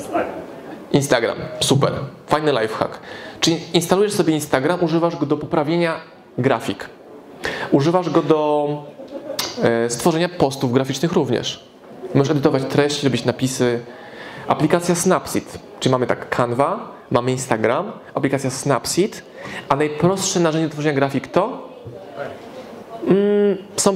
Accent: native